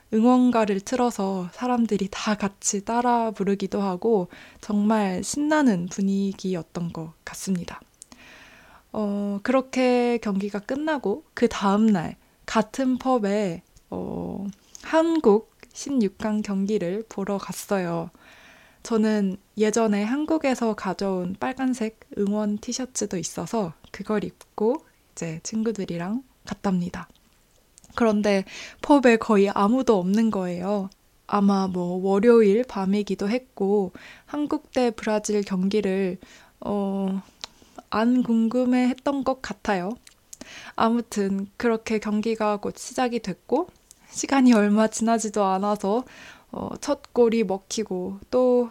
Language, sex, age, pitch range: Korean, female, 20-39, 195-240 Hz